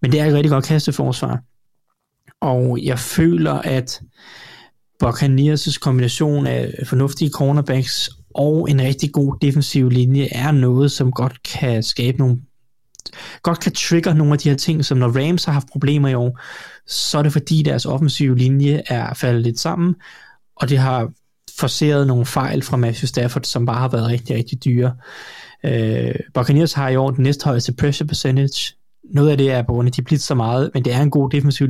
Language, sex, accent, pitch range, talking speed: Danish, male, native, 125-145 Hz, 185 wpm